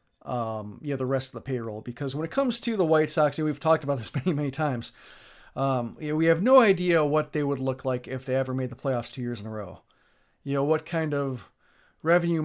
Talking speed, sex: 260 wpm, male